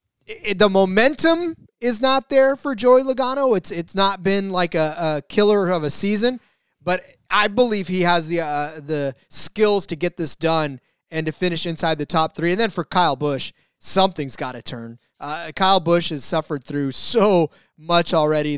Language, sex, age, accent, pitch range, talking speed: English, male, 20-39, American, 155-195 Hz, 185 wpm